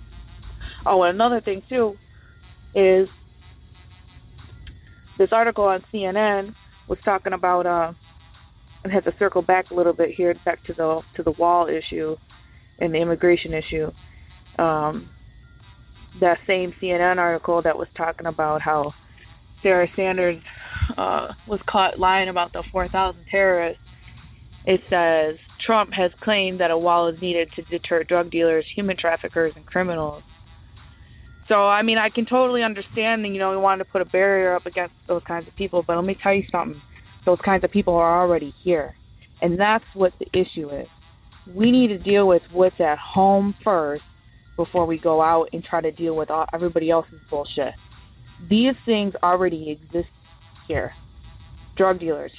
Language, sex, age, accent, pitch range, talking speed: English, female, 20-39, American, 160-190 Hz, 165 wpm